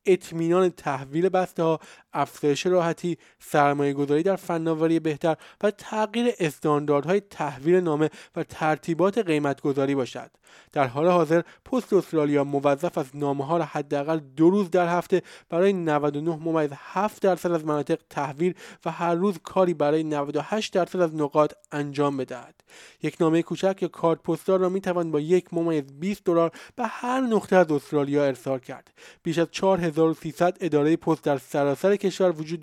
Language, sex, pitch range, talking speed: Persian, male, 150-185 Hz, 155 wpm